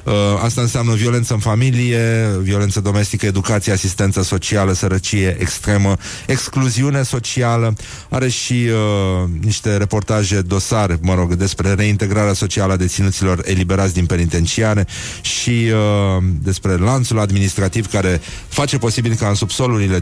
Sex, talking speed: male, 125 wpm